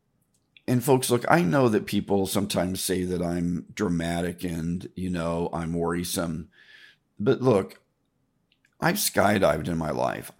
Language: English